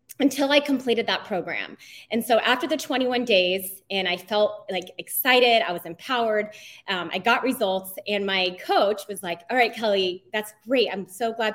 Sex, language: female, English